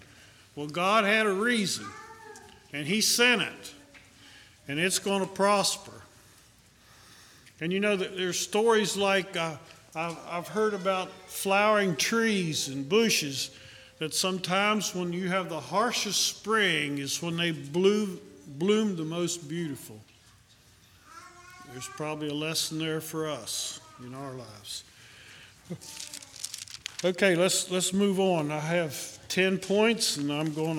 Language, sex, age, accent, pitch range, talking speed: English, male, 50-69, American, 145-195 Hz, 130 wpm